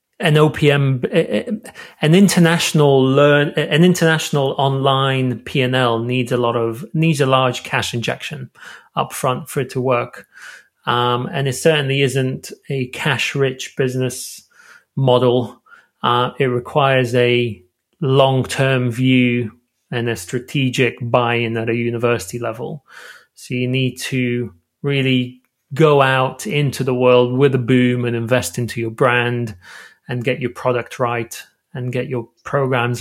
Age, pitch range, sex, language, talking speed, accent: 30-49, 120-145 Hz, male, English, 140 wpm, British